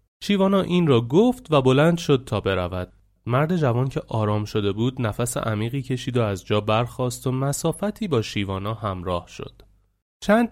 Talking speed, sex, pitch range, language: 165 wpm, male, 100-130 Hz, Persian